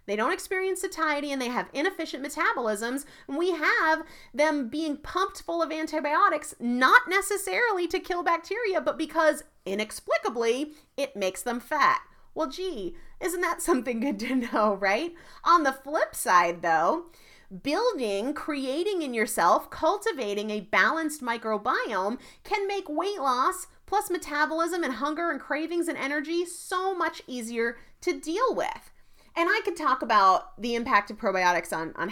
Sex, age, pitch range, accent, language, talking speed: female, 30-49, 240-345 Hz, American, English, 150 wpm